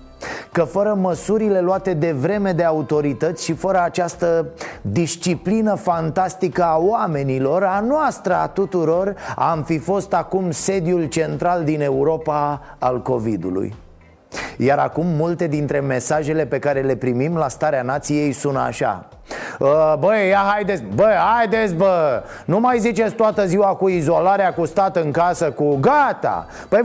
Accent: native